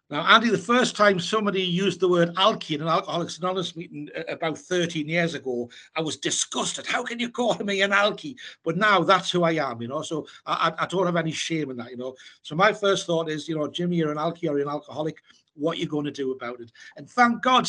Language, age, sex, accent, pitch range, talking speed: English, 60-79, male, British, 155-190 Hz, 250 wpm